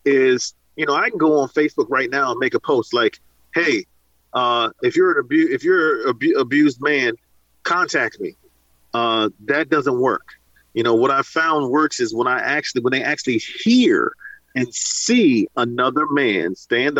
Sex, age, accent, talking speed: male, 40-59, American, 185 wpm